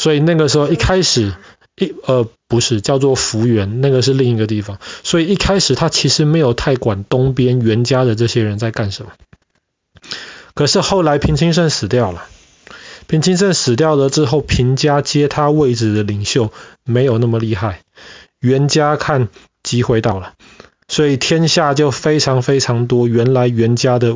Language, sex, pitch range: Chinese, male, 115-145 Hz